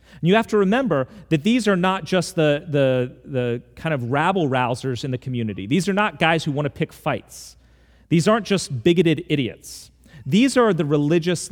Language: English